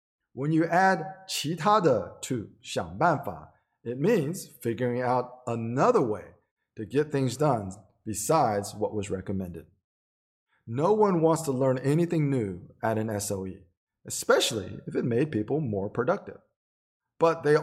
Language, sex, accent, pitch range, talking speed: English, male, American, 110-160 Hz, 135 wpm